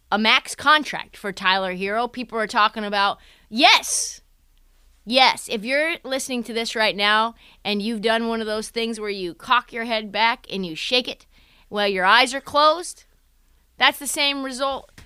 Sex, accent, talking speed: female, American, 180 wpm